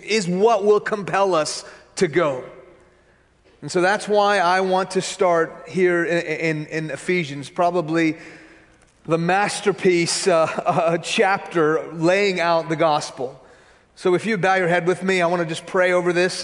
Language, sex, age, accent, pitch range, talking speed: English, male, 30-49, American, 150-170 Hz, 160 wpm